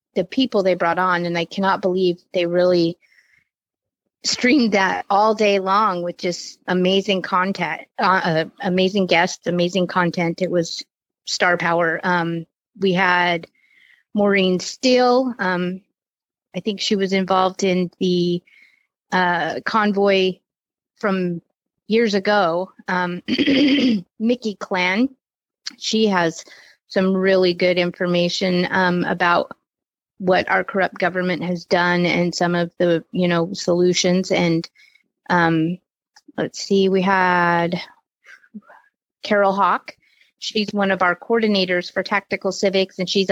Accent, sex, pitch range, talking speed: American, female, 175-200 Hz, 125 wpm